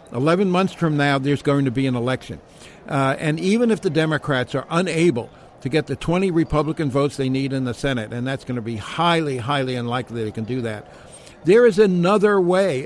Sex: male